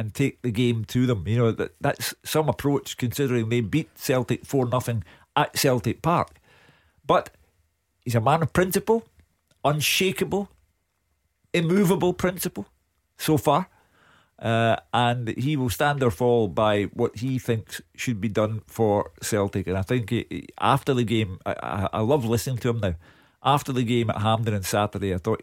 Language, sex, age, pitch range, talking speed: English, male, 50-69, 100-125 Hz, 170 wpm